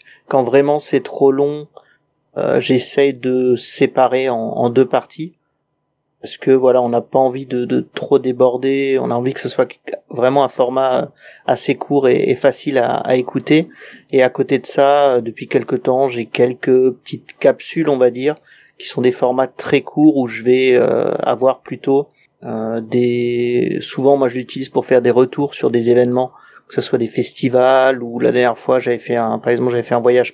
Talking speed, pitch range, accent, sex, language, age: 195 wpm, 125-140 Hz, French, male, French, 30-49